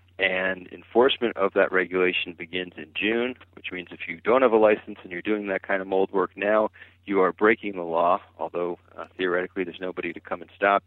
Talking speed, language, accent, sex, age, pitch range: 215 wpm, English, American, male, 40-59, 90-100 Hz